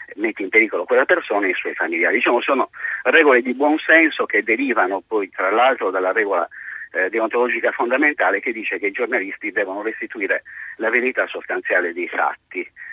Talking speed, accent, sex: 165 wpm, native, male